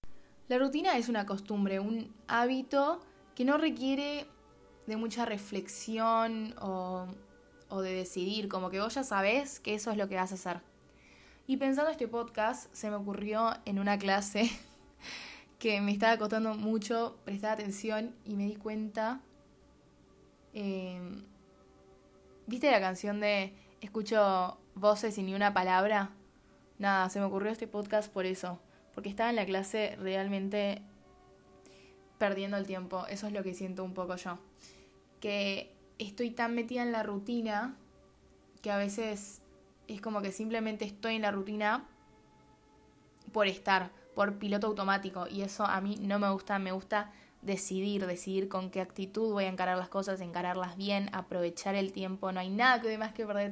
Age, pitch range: 20-39, 195-220 Hz